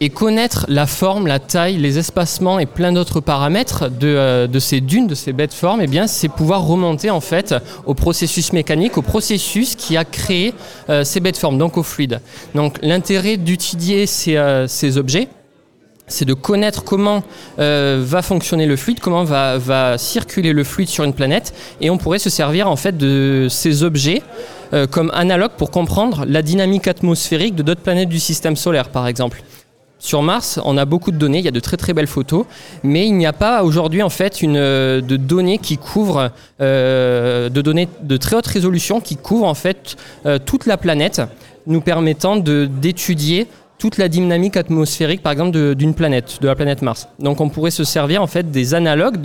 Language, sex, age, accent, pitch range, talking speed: French, male, 20-39, French, 140-180 Hz, 200 wpm